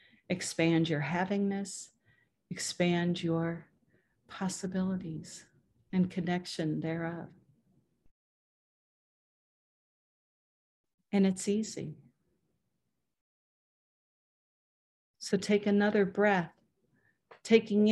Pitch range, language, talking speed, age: 165-200 Hz, English, 55 wpm, 40-59